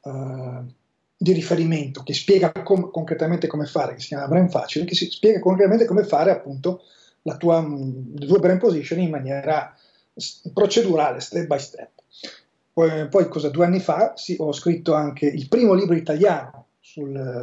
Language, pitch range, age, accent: Italian, 140-180 Hz, 30-49, native